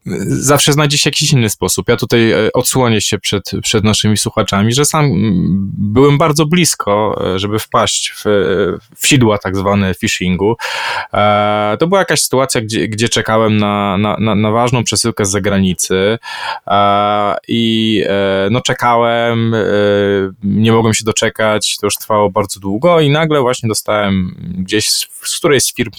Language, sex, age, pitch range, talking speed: Polish, male, 20-39, 105-130 Hz, 150 wpm